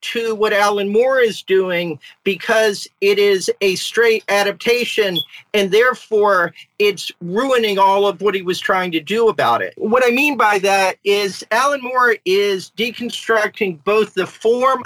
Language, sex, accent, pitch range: English, male, American, 190-245 Hz